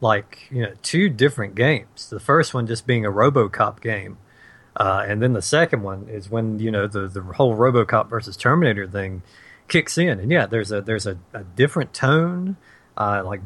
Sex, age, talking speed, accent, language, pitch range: male, 40-59, 195 wpm, American, English, 110-130 Hz